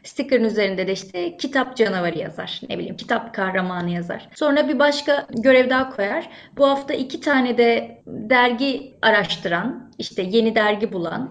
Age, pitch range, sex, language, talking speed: 30-49, 220-270 Hz, female, Turkish, 155 wpm